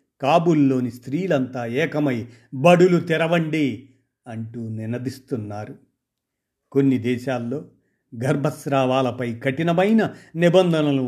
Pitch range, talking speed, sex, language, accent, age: 125-160 Hz, 65 wpm, male, Telugu, native, 50-69